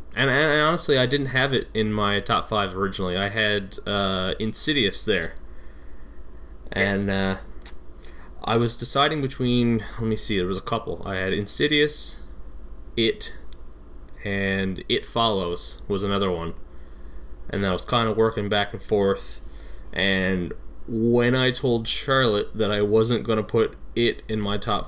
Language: English